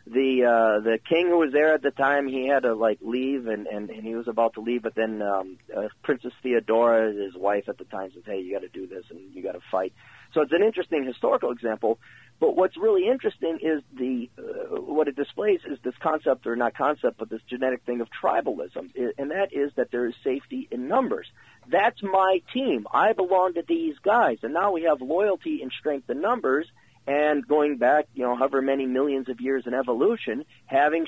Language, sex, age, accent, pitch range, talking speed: English, male, 40-59, American, 115-170 Hz, 215 wpm